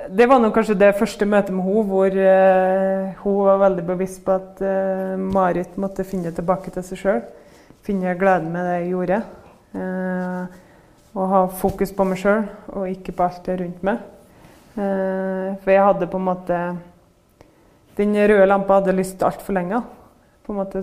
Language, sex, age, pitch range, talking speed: Swedish, female, 20-39, 185-200 Hz, 165 wpm